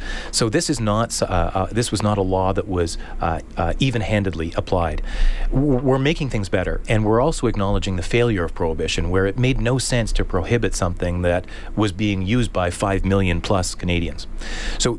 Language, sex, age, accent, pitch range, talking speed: English, male, 40-59, American, 95-120 Hz, 185 wpm